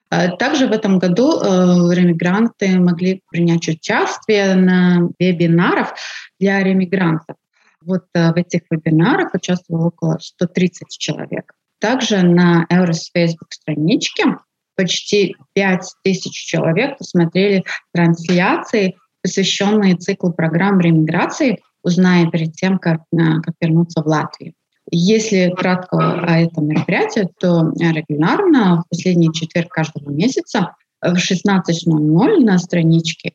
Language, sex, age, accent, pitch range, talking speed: Russian, female, 30-49, native, 165-195 Hz, 110 wpm